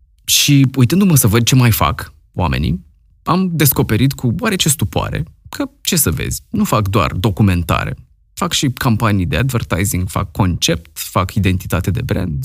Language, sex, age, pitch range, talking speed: Romanian, male, 20-39, 95-130 Hz, 155 wpm